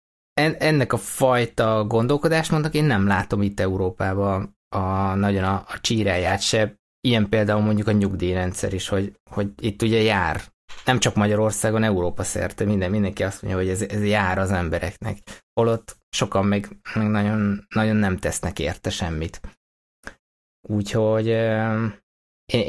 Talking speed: 140 wpm